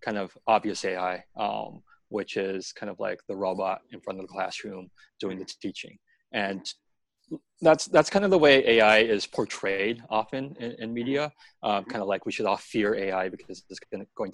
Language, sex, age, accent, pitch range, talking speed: English, male, 30-49, American, 100-140 Hz, 195 wpm